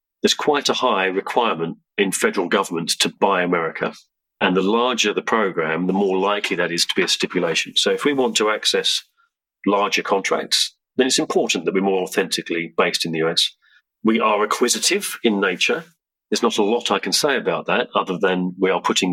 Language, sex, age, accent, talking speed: English, male, 40-59, British, 200 wpm